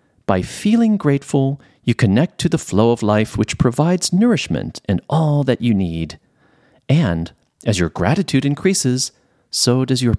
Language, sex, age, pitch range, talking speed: English, male, 40-59, 90-130 Hz, 155 wpm